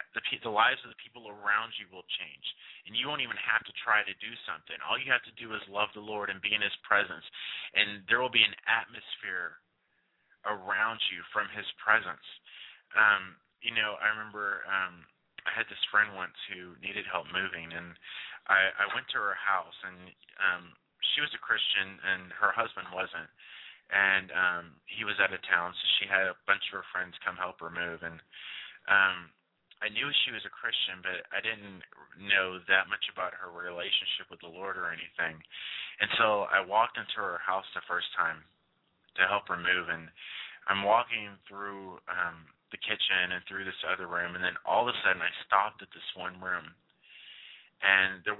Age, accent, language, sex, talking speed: 20-39, American, English, male, 195 wpm